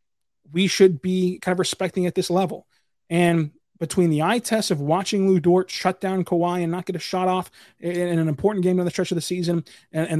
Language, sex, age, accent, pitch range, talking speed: English, male, 20-39, American, 160-185 Hz, 225 wpm